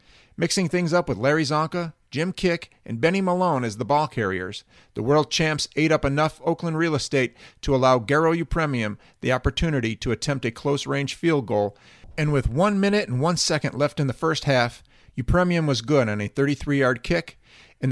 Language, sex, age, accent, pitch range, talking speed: English, male, 50-69, American, 120-165 Hz, 190 wpm